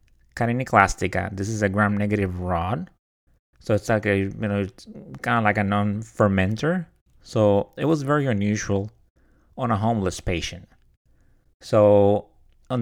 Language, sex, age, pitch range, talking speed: English, male, 30-49, 100-120 Hz, 140 wpm